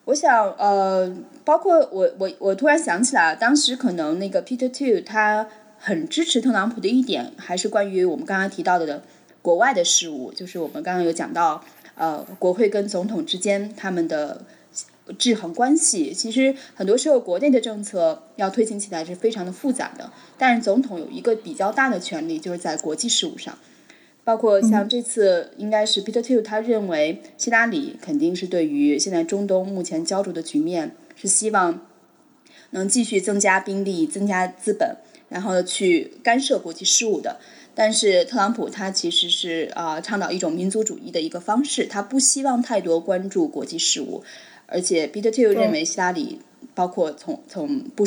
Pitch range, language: 180-270 Hz, Chinese